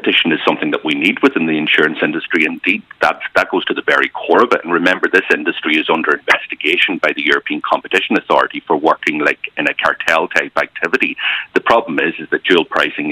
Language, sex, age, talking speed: English, male, 40-59, 215 wpm